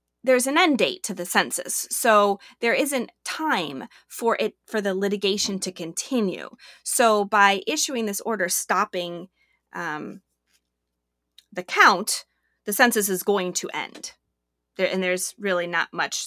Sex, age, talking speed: female, 30-49, 145 wpm